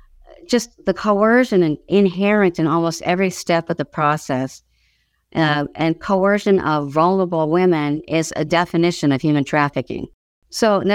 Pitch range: 145-190 Hz